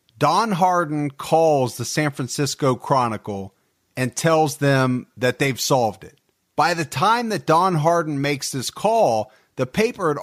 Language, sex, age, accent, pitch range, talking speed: English, male, 40-59, American, 120-170 Hz, 155 wpm